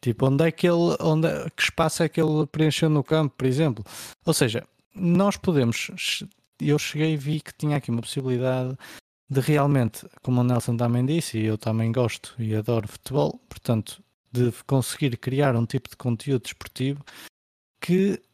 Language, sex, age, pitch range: Portuguese, male, 20-39, 115-155 Hz